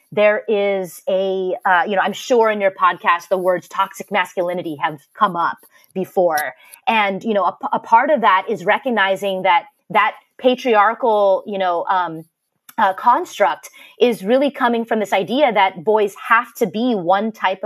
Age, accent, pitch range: 30-49, American, 195-255 Hz